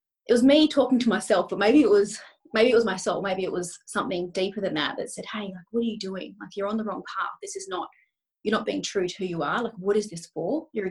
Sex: female